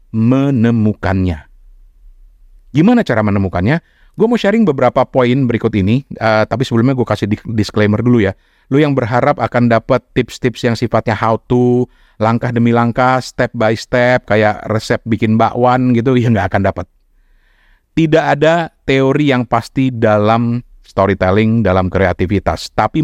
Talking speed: 140 wpm